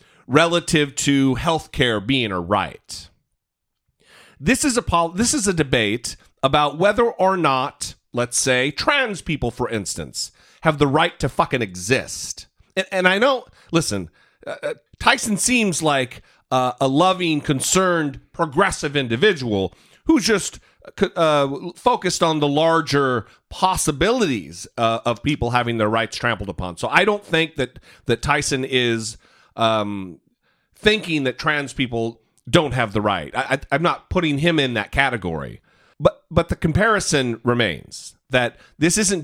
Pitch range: 120-170 Hz